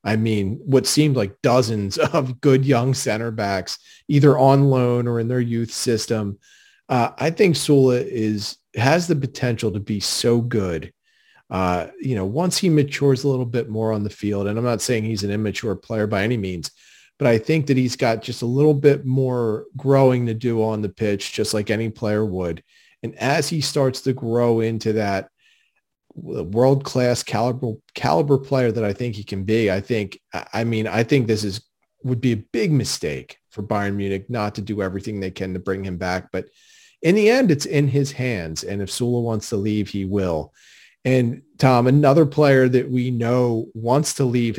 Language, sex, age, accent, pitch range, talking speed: English, male, 40-59, American, 100-130 Hz, 200 wpm